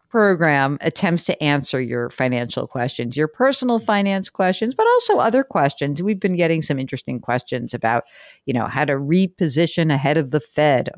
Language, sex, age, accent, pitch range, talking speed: English, female, 50-69, American, 135-195 Hz, 170 wpm